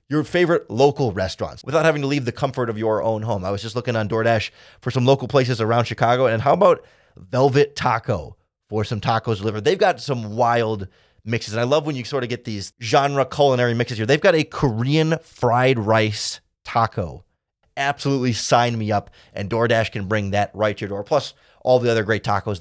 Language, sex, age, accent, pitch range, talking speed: English, male, 30-49, American, 110-145 Hz, 210 wpm